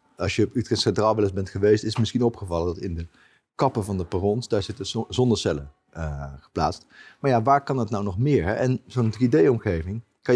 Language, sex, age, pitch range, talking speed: Dutch, male, 40-59, 95-115 Hz, 220 wpm